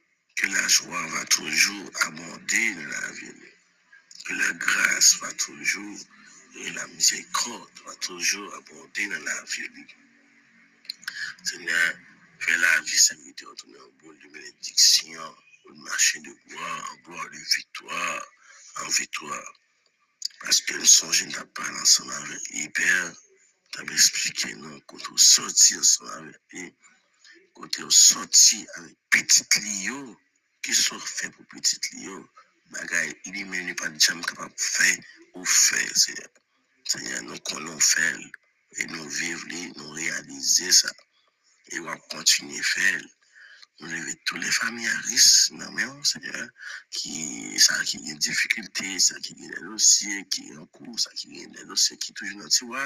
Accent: French